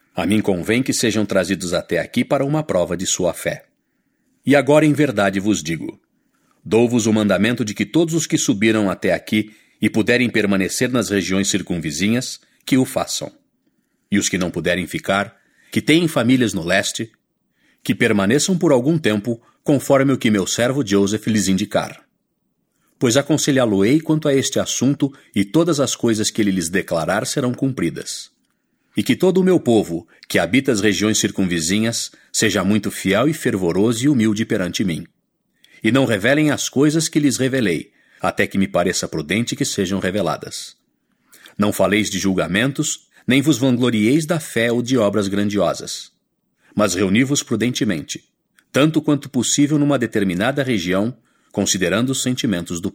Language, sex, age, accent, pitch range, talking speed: English, male, 50-69, Brazilian, 100-135 Hz, 160 wpm